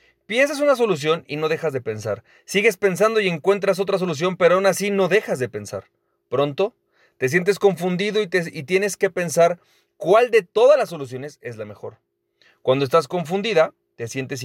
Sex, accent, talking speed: male, Mexican, 180 wpm